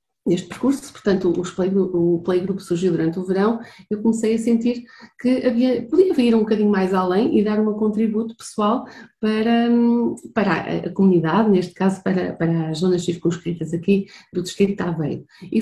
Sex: female